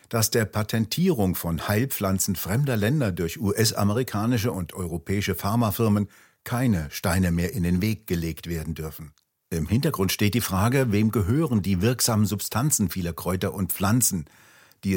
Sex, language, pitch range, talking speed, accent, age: male, German, 90-115 Hz, 145 wpm, German, 60-79